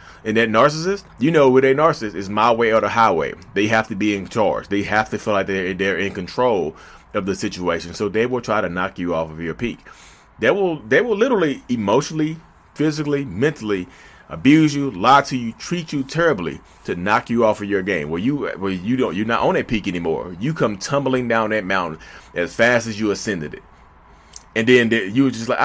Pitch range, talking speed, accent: 95-155 Hz, 220 wpm, American